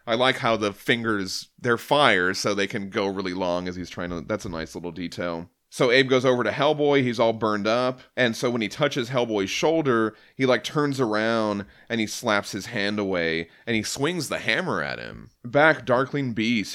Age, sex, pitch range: 30-49, male, 100-125 Hz